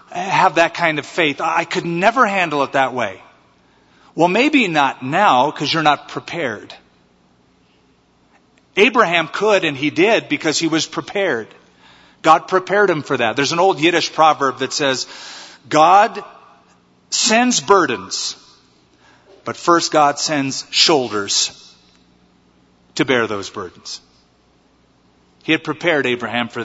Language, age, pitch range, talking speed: English, 40-59, 115-165 Hz, 130 wpm